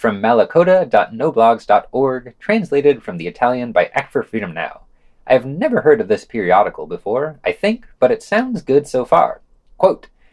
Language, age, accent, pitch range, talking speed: English, 30-49, American, 130-195 Hz, 155 wpm